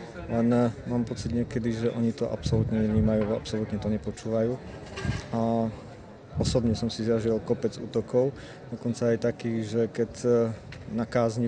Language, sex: Slovak, male